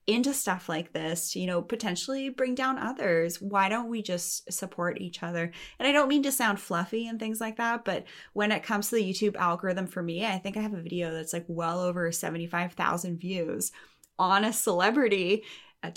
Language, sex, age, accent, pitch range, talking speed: English, female, 20-39, American, 175-220 Hz, 205 wpm